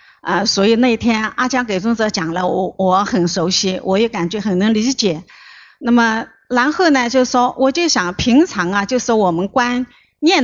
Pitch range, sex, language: 205-275 Hz, female, Chinese